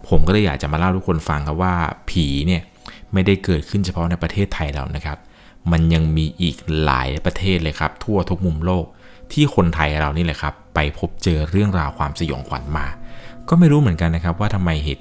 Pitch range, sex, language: 75-90 Hz, male, Thai